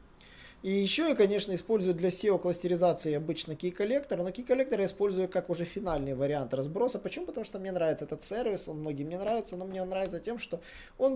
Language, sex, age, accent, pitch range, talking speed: Russian, male, 20-39, native, 145-195 Hz, 210 wpm